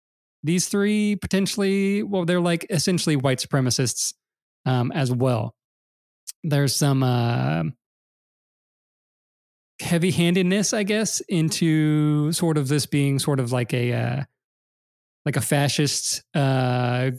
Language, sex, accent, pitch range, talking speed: English, male, American, 130-175 Hz, 115 wpm